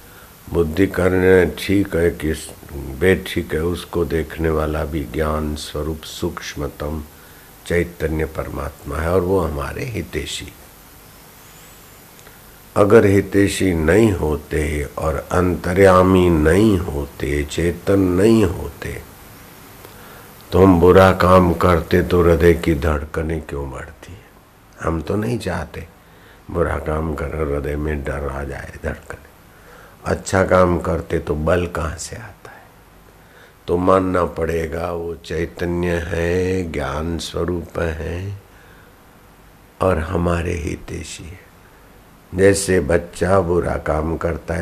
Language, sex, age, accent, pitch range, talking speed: Hindi, male, 60-79, native, 80-95 Hz, 115 wpm